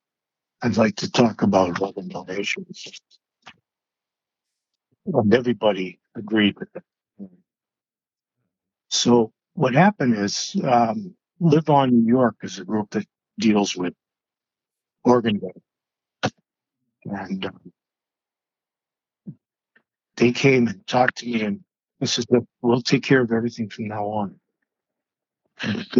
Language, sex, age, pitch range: English, male, 60-79, 105-135 Hz